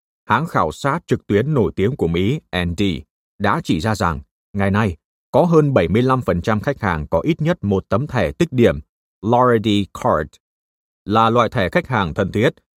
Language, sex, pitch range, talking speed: Vietnamese, male, 90-125 Hz, 180 wpm